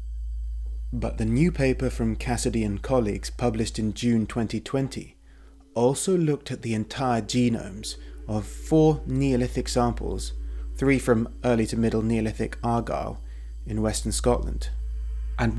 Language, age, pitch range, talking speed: English, 30-49, 85-120 Hz, 125 wpm